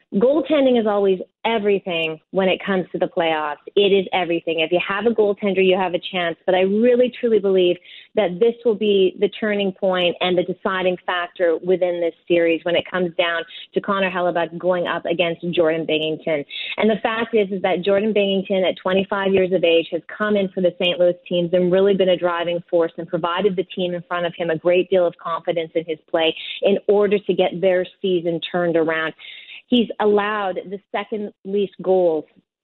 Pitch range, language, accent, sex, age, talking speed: 175-210 Hz, English, American, female, 30-49, 200 wpm